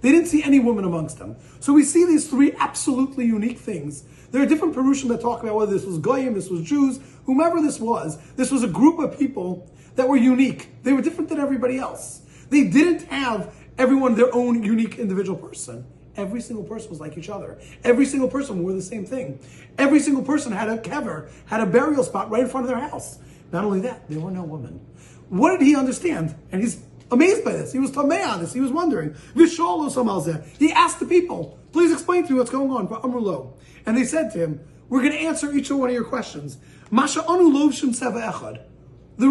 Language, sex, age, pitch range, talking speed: English, male, 30-49, 210-290 Hz, 205 wpm